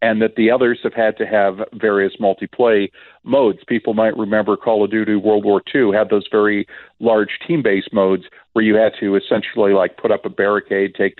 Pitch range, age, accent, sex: 95-110 Hz, 50-69, American, male